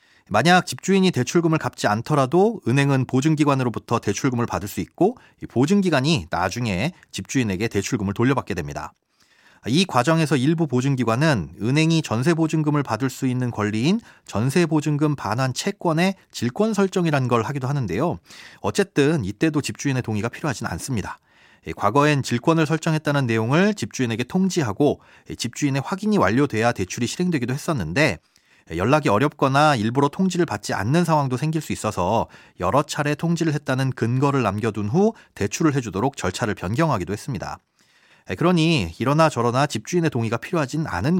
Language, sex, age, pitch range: Korean, male, 30-49, 120-165 Hz